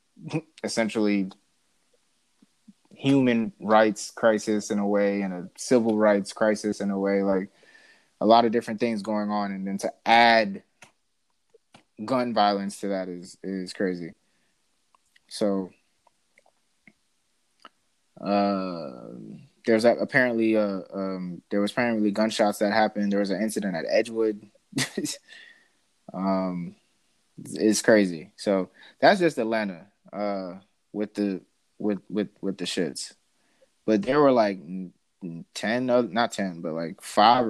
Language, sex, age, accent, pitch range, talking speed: English, male, 20-39, American, 100-130 Hz, 125 wpm